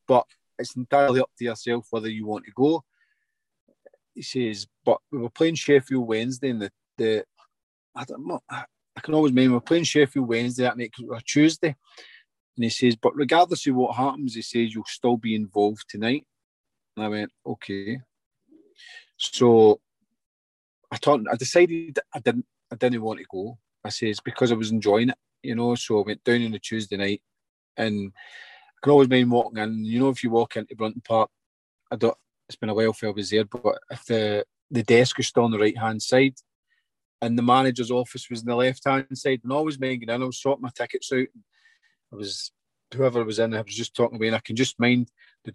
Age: 30-49